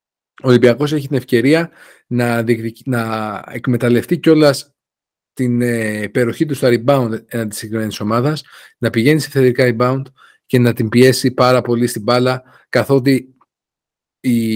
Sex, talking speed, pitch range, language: male, 140 wpm, 120-150 Hz, Greek